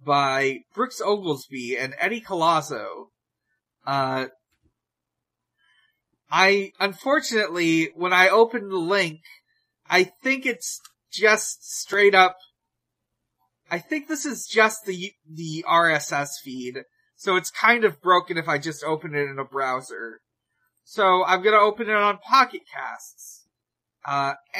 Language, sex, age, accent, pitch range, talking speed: English, male, 30-49, American, 140-200 Hz, 125 wpm